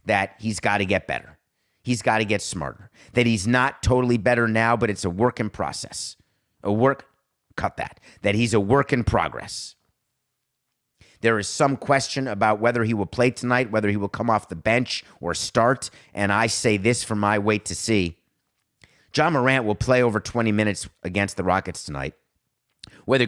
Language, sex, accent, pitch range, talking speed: English, male, American, 100-125 Hz, 185 wpm